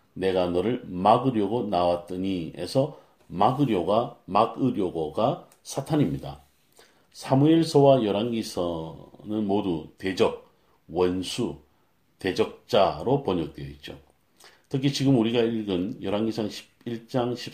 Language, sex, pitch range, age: Korean, male, 90-130 Hz, 40-59